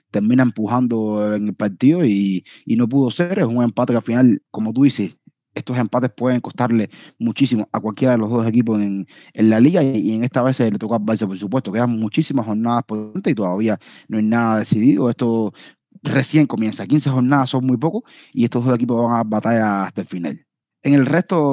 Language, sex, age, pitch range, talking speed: Spanish, male, 20-39, 110-135 Hz, 210 wpm